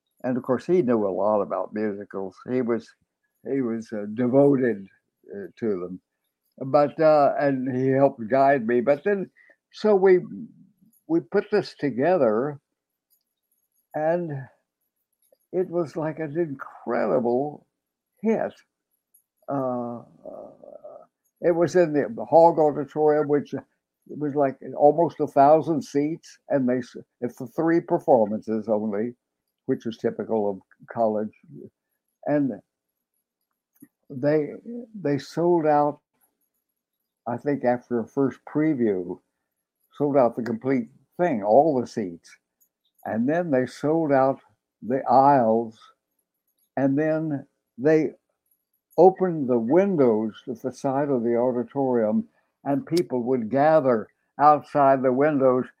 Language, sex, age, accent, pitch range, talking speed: English, male, 60-79, American, 115-155 Hz, 120 wpm